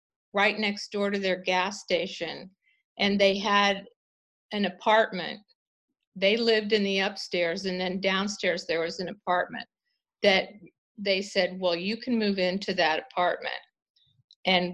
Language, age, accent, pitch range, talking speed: English, 50-69, American, 185-215 Hz, 145 wpm